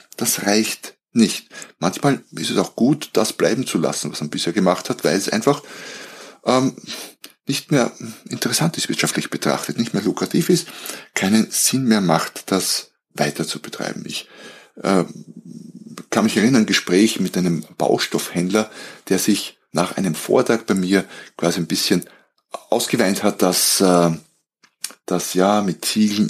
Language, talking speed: German, 155 wpm